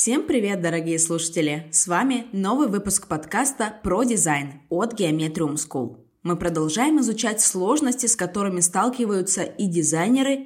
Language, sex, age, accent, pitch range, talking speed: Russian, female, 20-39, native, 160-235 Hz, 130 wpm